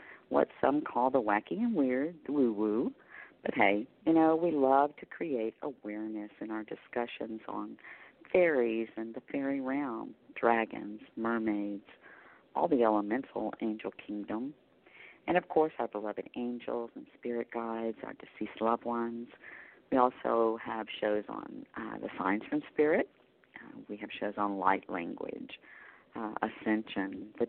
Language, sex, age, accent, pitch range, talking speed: English, female, 50-69, American, 110-130 Hz, 145 wpm